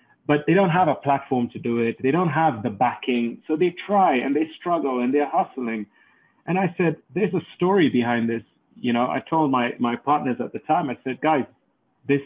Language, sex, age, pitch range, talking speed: English, male, 30-49, 125-155 Hz, 220 wpm